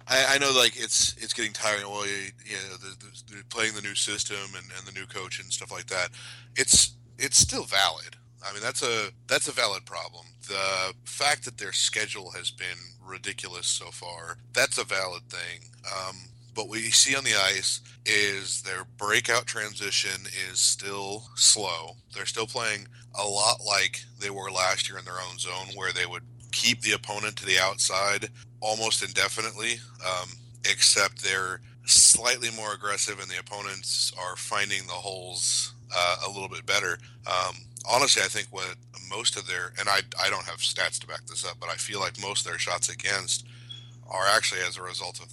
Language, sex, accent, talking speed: English, male, American, 190 wpm